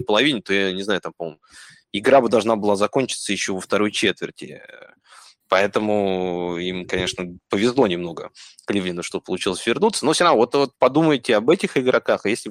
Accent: native